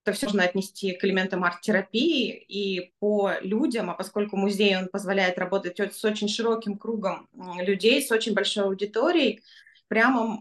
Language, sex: Russian, female